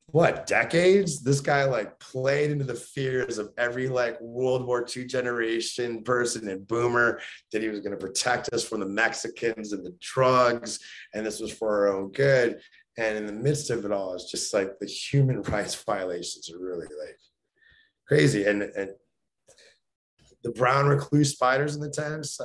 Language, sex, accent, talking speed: English, male, American, 175 wpm